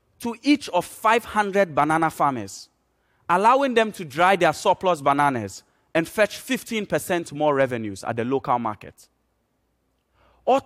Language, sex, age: Korean, male, 30-49